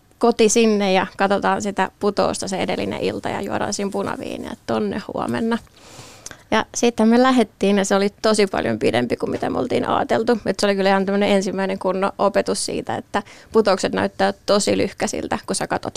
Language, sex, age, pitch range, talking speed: Finnish, female, 20-39, 195-220 Hz, 175 wpm